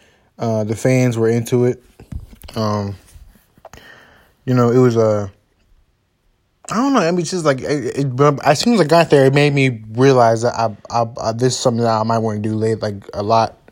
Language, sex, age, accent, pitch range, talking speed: English, male, 20-39, American, 110-135 Hz, 220 wpm